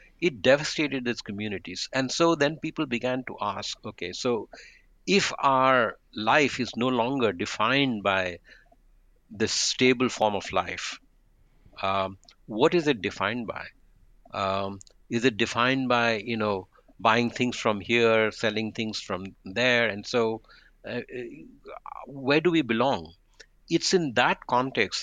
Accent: Indian